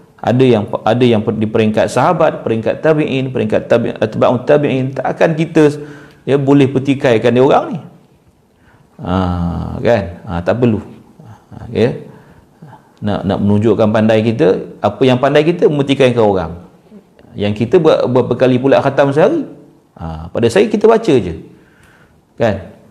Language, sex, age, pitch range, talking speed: Malay, male, 50-69, 105-150 Hz, 145 wpm